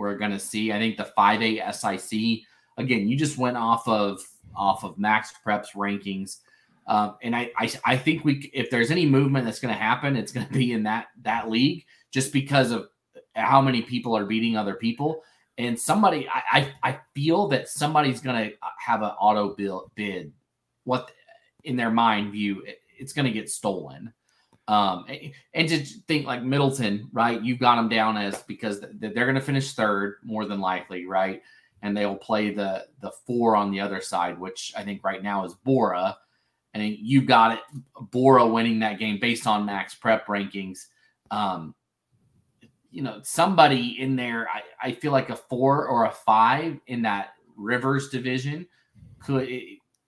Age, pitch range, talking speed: 30-49, 105-135 Hz, 175 wpm